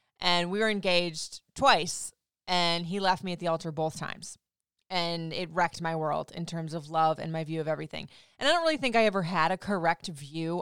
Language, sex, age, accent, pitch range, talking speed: English, female, 20-39, American, 160-195 Hz, 220 wpm